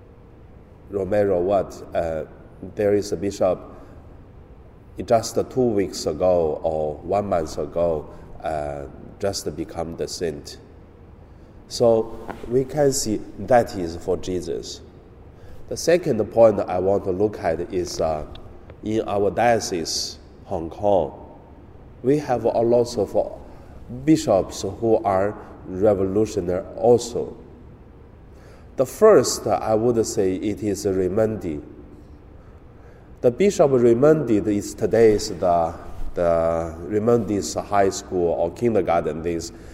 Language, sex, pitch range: Chinese, male, 85-115 Hz